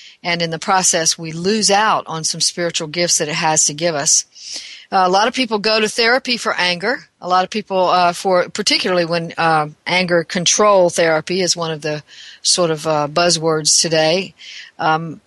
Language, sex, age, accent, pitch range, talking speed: English, female, 50-69, American, 165-195 Hz, 195 wpm